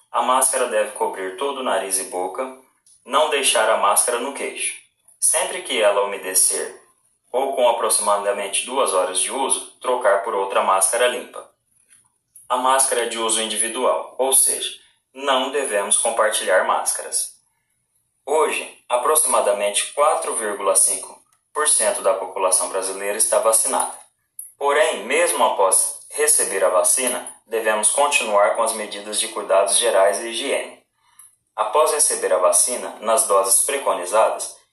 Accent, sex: Brazilian, male